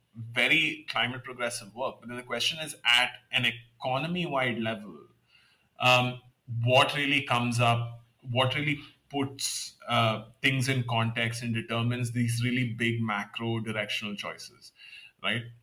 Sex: male